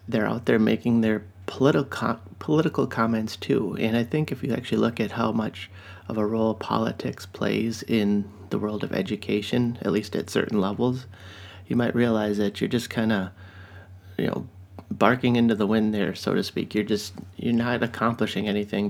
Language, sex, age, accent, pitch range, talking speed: English, male, 30-49, American, 100-115 Hz, 185 wpm